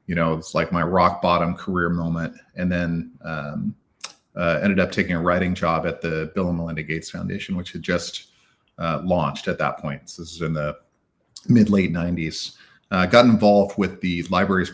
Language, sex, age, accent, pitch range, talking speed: English, male, 40-59, American, 80-95 Hz, 195 wpm